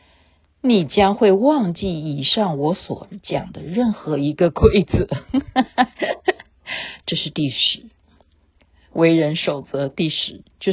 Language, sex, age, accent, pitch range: Chinese, female, 50-69, native, 140-220 Hz